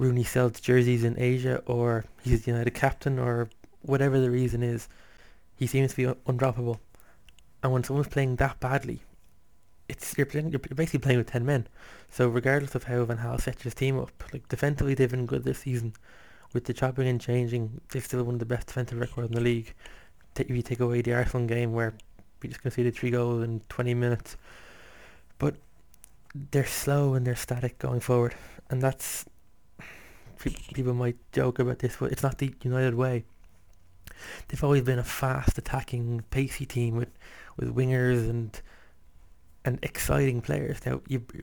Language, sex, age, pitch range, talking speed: English, male, 20-39, 120-130 Hz, 175 wpm